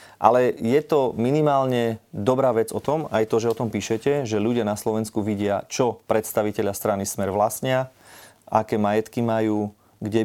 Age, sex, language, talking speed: 30-49, male, Slovak, 165 wpm